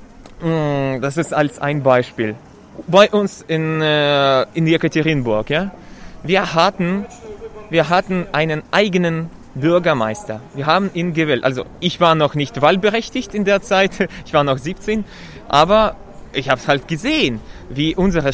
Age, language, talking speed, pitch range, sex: 20-39, German, 145 wpm, 135-180 Hz, male